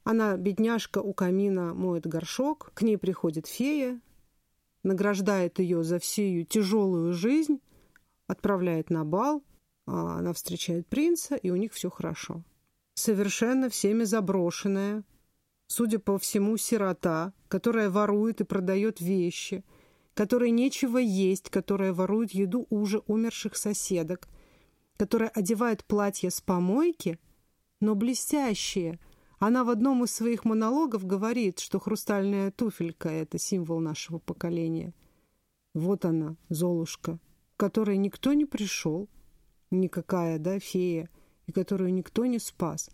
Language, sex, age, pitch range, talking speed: Russian, female, 40-59, 170-220 Hz, 120 wpm